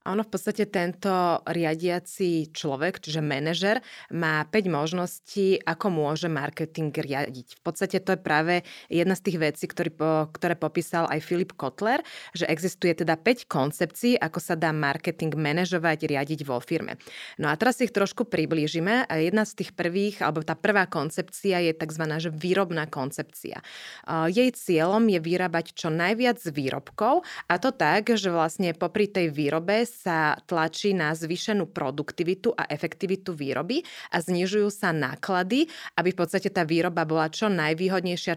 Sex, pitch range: female, 160-195 Hz